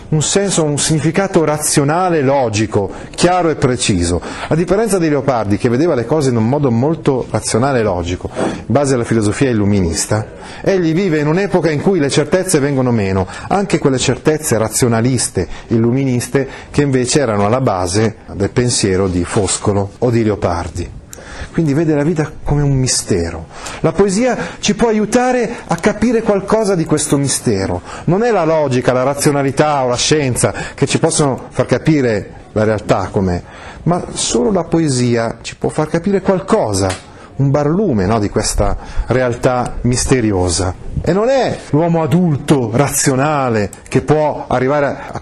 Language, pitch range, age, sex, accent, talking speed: Italian, 110-155 Hz, 40-59, male, native, 155 wpm